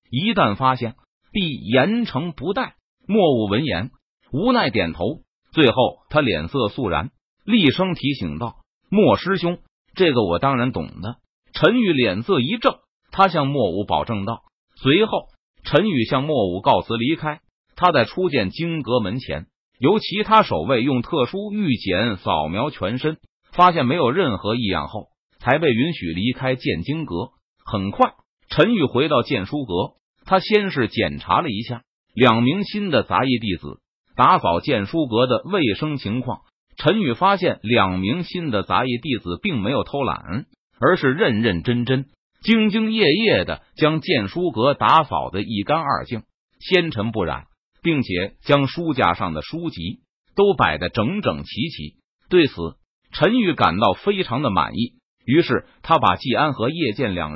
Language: Chinese